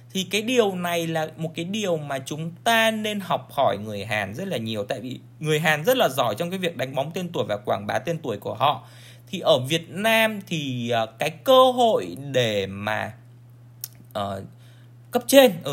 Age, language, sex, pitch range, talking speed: 20-39, Vietnamese, male, 120-190 Hz, 205 wpm